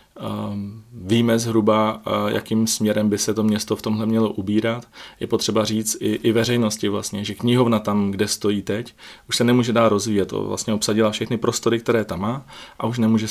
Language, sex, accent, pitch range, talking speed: Czech, male, native, 105-115 Hz, 195 wpm